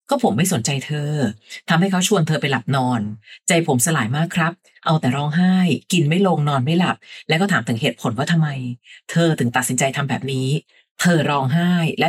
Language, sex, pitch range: Thai, female, 135-180 Hz